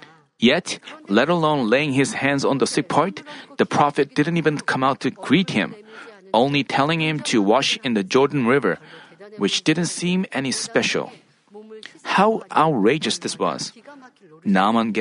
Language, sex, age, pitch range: Korean, male, 40-59, 135-200 Hz